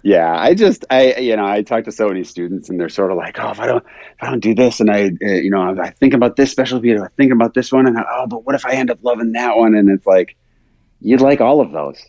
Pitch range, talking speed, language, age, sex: 85-130 Hz, 305 wpm, English, 30-49, male